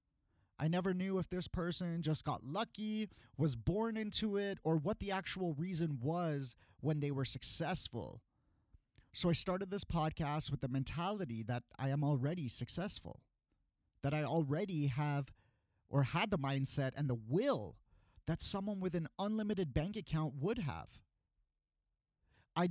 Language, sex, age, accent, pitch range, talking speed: English, male, 30-49, American, 135-190 Hz, 150 wpm